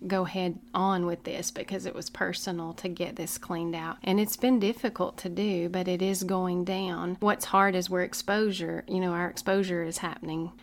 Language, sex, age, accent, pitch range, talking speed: English, female, 30-49, American, 175-195 Hz, 205 wpm